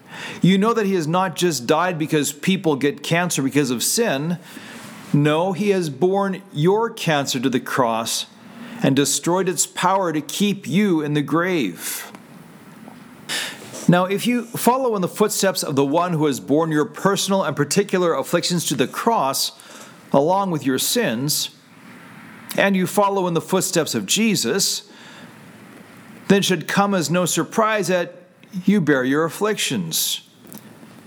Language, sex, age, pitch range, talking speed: English, male, 40-59, 155-210 Hz, 150 wpm